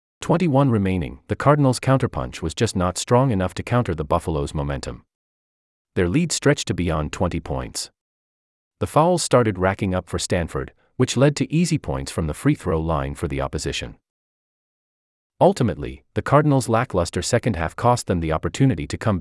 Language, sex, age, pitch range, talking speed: English, male, 40-59, 75-130 Hz, 165 wpm